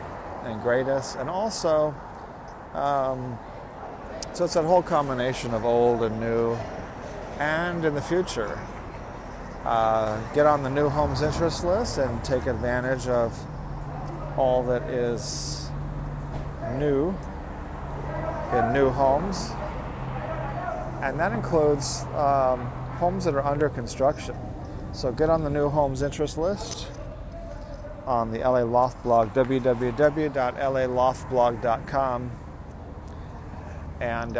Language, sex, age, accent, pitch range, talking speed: English, male, 40-59, American, 110-140 Hz, 105 wpm